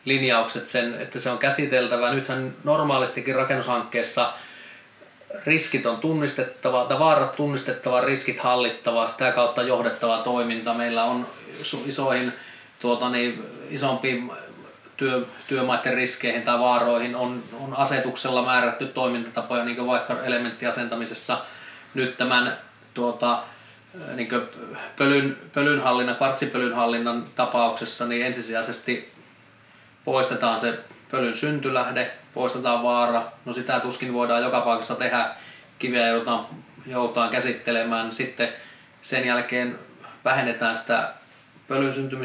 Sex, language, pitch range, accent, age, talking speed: male, Finnish, 120-130 Hz, native, 20-39, 100 wpm